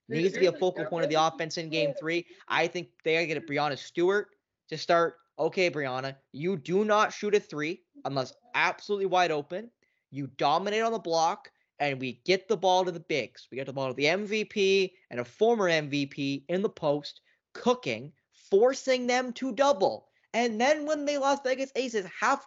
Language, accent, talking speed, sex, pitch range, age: English, American, 200 wpm, male, 150-220 Hz, 20-39